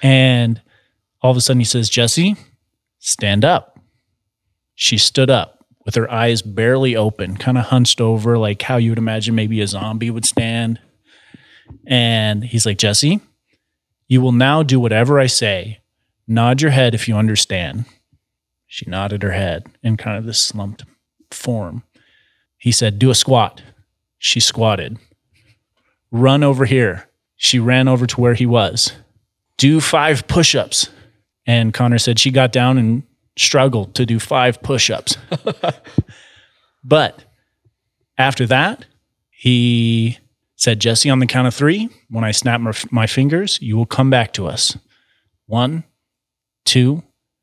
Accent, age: American, 30-49